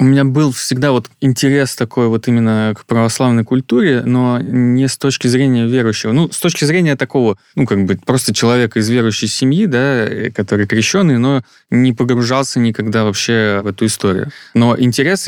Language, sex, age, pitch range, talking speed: Russian, male, 20-39, 105-125 Hz, 175 wpm